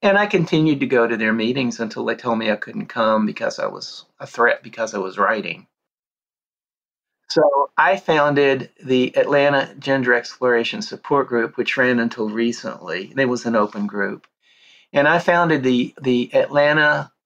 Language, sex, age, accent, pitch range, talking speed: English, male, 40-59, American, 115-140 Hz, 165 wpm